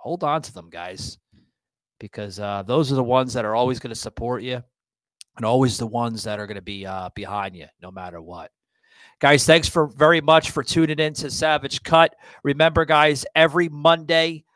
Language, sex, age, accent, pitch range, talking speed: English, male, 30-49, American, 110-145 Hz, 200 wpm